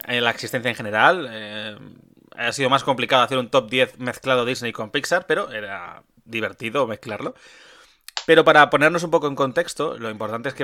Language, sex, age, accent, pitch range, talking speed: Spanish, male, 20-39, Spanish, 120-150 Hz, 185 wpm